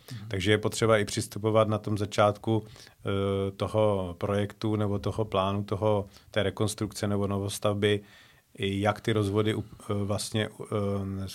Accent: native